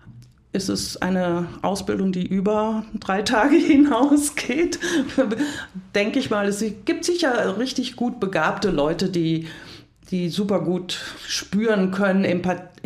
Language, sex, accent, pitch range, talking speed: German, female, German, 165-215 Hz, 120 wpm